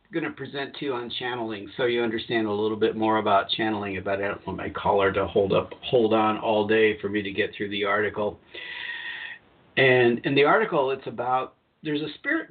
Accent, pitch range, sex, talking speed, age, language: American, 105-125 Hz, male, 215 wpm, 50-69, English